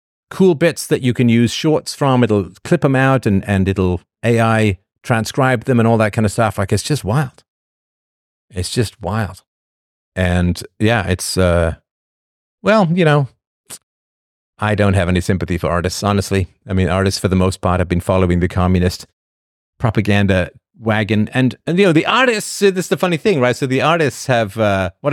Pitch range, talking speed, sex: 100-150 Hz, 185 wpm, male